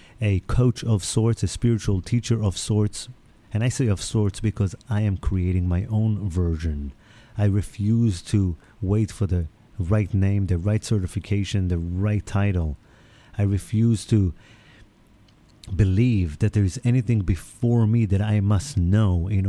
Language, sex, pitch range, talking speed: English, male, 95-115 Hz, 155 wpm